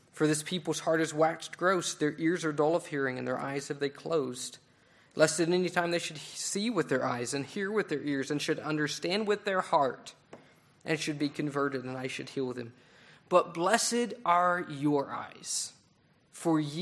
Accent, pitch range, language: American, 140-185 Hz, English